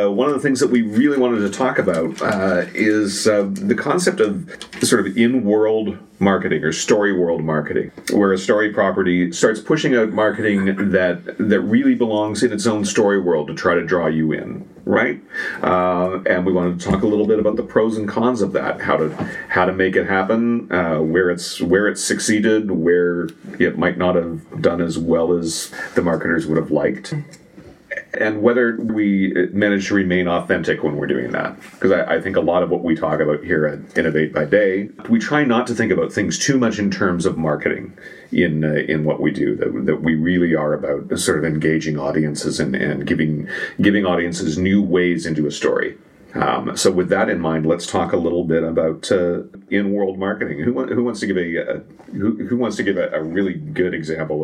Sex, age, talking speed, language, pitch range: male, 40-59, 210 wpm, English, 80-105 Hz